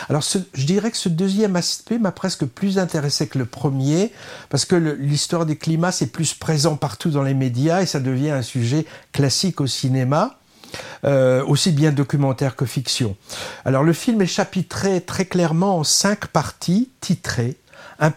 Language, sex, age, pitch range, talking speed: French, male, 60-79, 135-180 Hz, 180 wpm